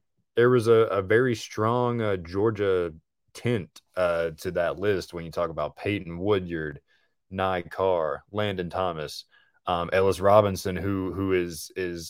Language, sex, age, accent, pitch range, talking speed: English, male, 20-39, American, 90-110 Hz, 150 wpm